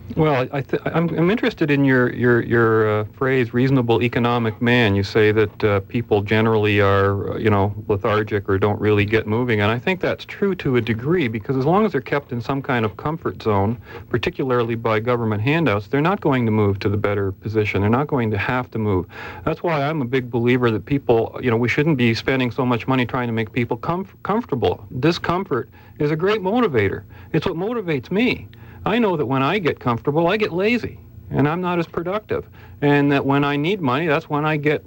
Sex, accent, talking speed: male, American, 220 wpm